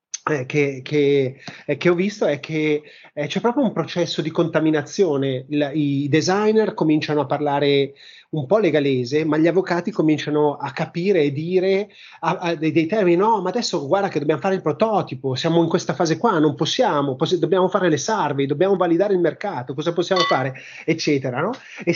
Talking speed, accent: 185 wpm, native